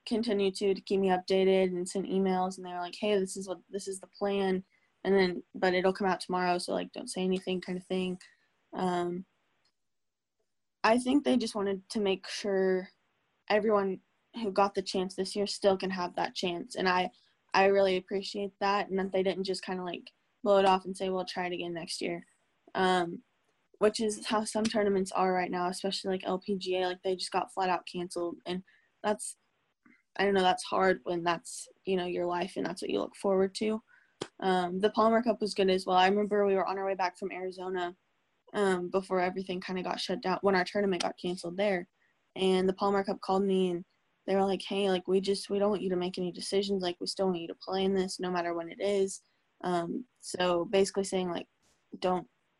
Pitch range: 180-200 Hz